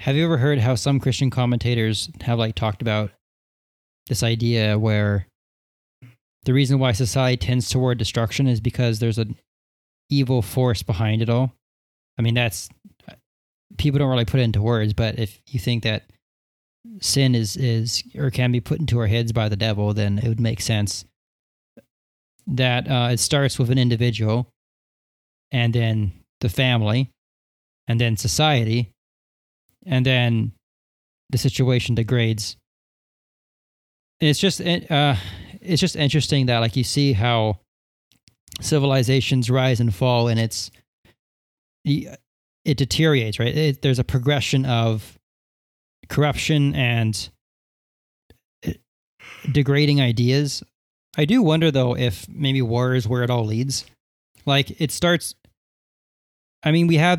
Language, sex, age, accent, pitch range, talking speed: English, male, 20-39, American, 105-135 Hz, 140 wpm